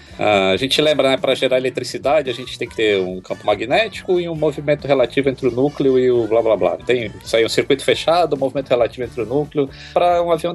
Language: Portuguese